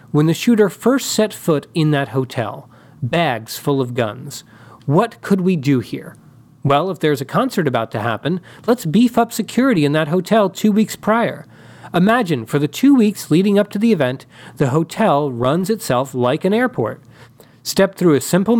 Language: English